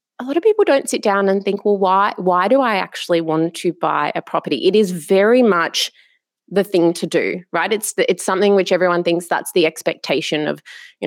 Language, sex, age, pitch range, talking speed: English, female, 20-39, 170-215 Hz, 220 wpm